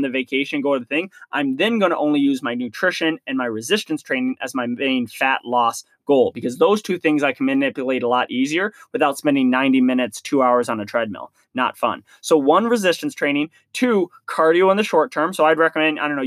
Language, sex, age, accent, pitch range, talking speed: English, male, 20-39, American, 135-180 Hz, 225 wpm